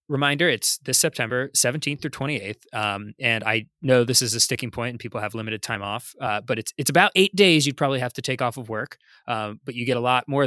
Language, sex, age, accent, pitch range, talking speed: English, male, 20-39, American, 115-140 Hz, 250 wpm